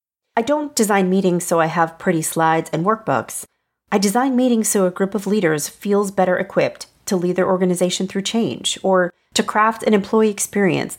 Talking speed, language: 185 wpm, English